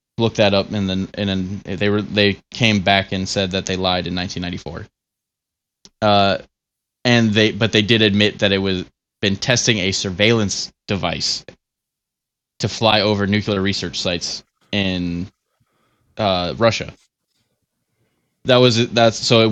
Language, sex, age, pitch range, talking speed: English, male, 20-39, 100-120 Hz, 150 wpm